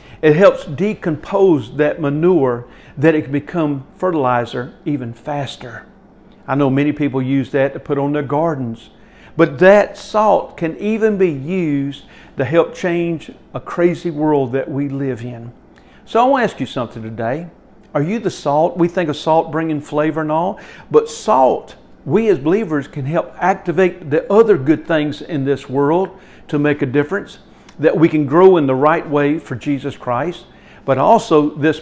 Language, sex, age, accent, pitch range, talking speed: English, male, 50-69, American, 135-170 Hz, 175 wpm